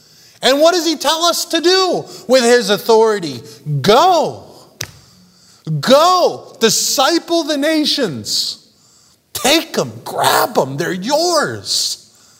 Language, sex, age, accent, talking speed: English, male, 30-49, American, 105 wpm